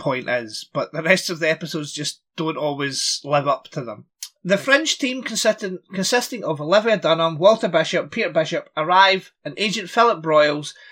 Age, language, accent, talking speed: 30-49, English, British, 175 wpm